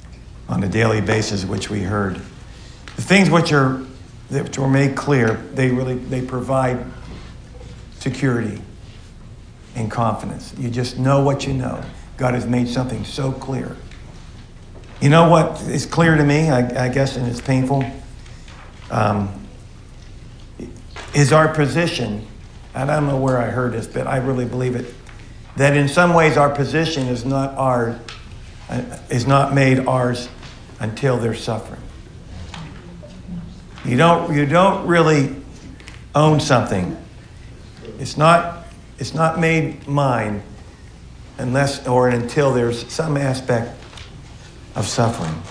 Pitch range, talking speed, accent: 115-140 Hz, 130 wpm, American